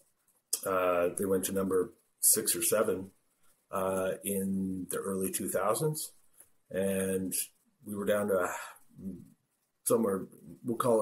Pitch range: 90-115 Hz